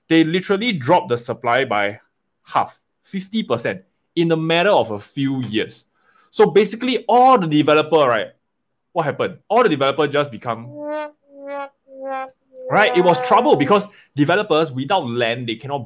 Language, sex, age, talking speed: English, male, 20-39, 145 wpm